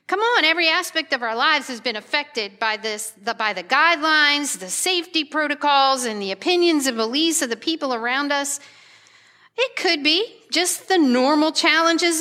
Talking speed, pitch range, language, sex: 170 wpm, 240-325 Hz, English, female